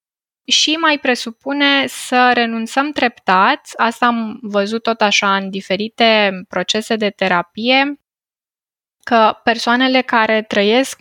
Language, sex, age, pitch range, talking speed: Romanian, female, 10-29, 200-250 Hz, 110 wpm